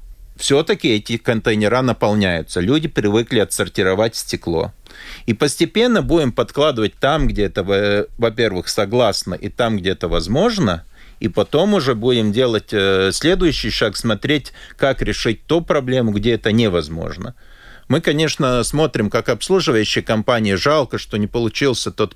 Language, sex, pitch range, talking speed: Russian, male, 105-130 Hz, 130 wpm